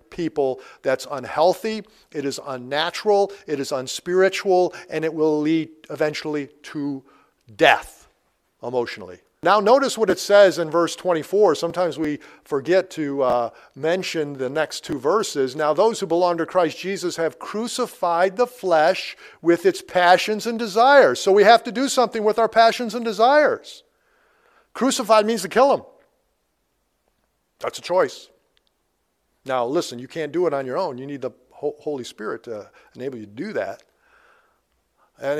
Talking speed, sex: 155 wpm, male